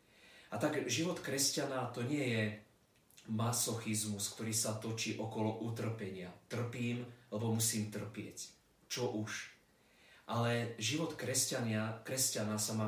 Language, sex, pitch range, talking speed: Slovak, male, 110-120 Hz, 110 wpm